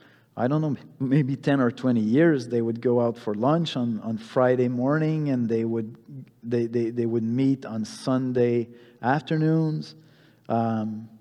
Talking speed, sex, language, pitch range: 160 wpm, male, English, 120-150 Hz